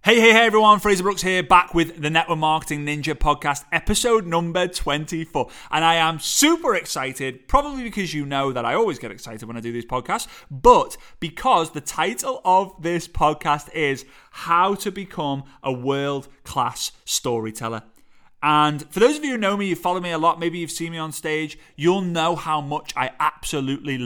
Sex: male